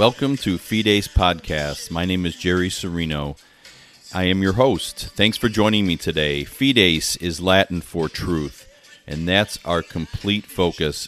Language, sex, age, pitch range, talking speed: English, male, 40-59, 70-95 Hz, 150 wpm